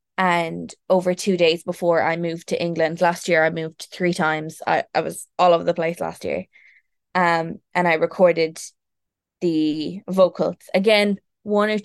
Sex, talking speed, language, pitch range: female, 165 wpm, English, 175-210 Hz